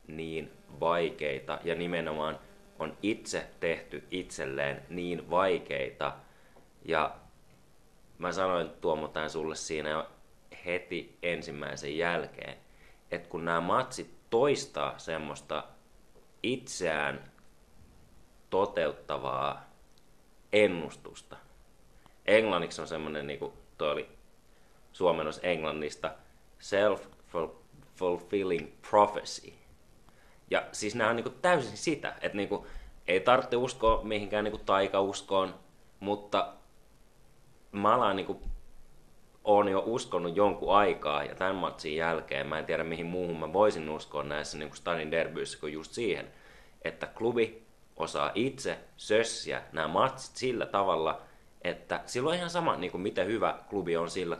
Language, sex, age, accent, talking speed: Finnish, male, 30-49, native, 115 wpm